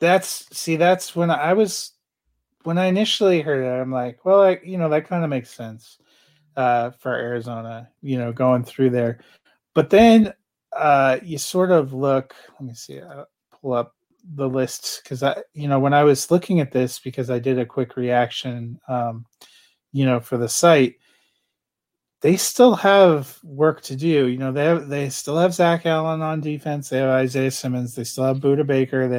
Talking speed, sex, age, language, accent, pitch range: 195 wpm, male, 30-49, English, American, 125-155 Hz